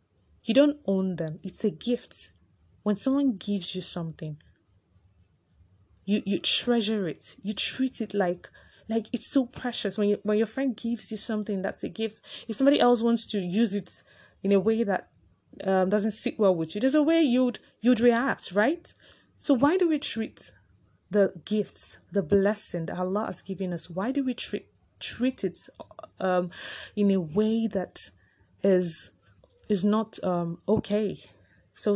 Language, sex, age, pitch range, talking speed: English, female, 20-39, 160-215 Hz, 170 wpm